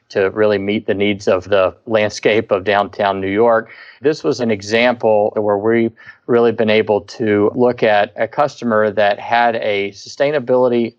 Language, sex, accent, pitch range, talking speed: English, male, American, 100-115 Hz, 165 wpm